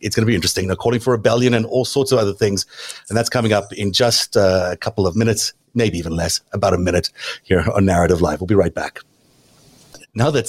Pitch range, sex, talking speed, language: 100-125 Hz, male, 235 wpm, English